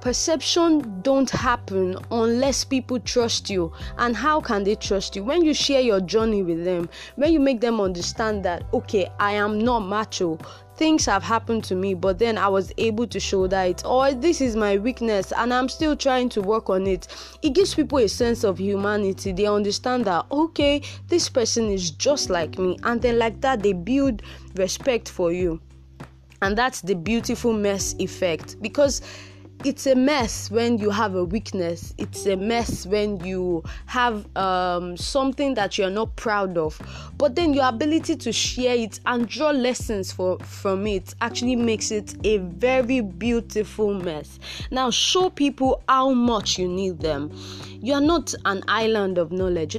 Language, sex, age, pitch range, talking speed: English, female, 20-39, 190-255 Hz, 175 wpm